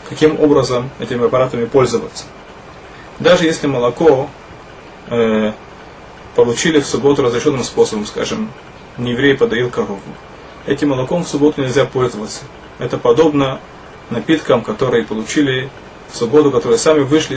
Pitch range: 125-155 Hz